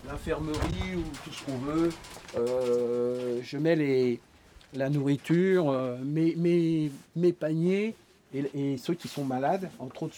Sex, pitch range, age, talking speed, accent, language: male, 120-150 Hz, 50-69, 145 wpm, French, French